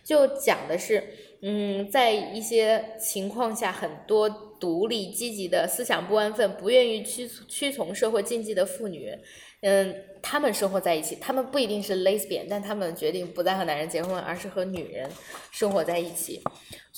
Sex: female